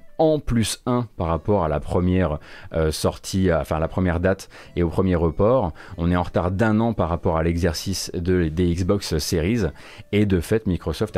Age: 30-49